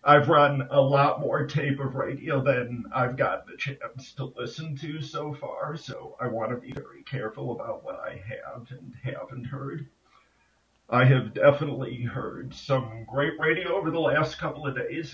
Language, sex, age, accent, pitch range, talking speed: English, male, 50-69, American, 130-150 Hz, 180 wpm